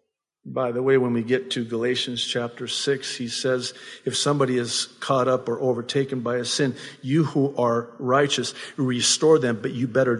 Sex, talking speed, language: male, 180 wpm, English